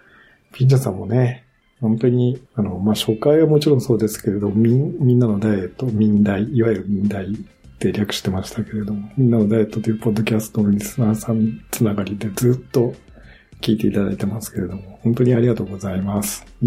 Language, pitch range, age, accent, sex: Japanese, 105-130 Hz, 50-69, native, male